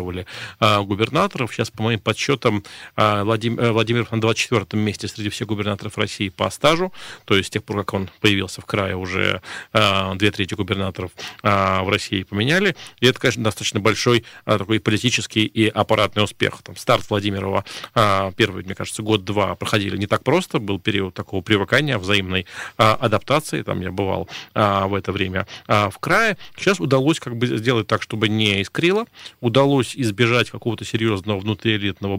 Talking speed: 155 wpm